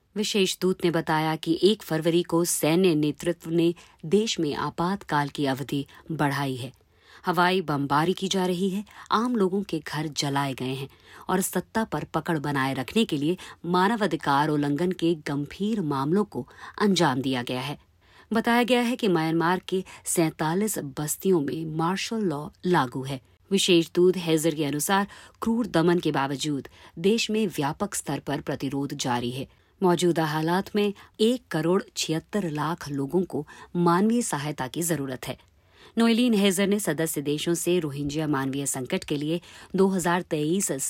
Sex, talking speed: female, 155 wpm